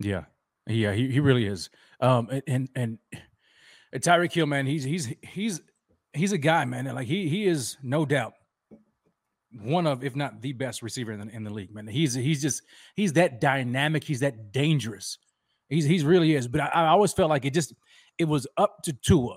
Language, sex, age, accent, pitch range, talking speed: English, male, 30-49, American, 130-165 Hz, 205 wpm